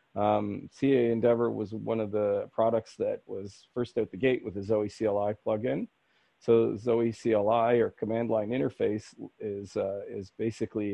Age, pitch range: 40-59, 90-110 Hz